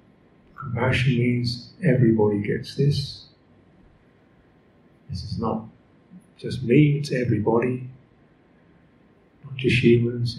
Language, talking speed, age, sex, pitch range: English, 85 wpm, 50-69, male, 115-150 Hz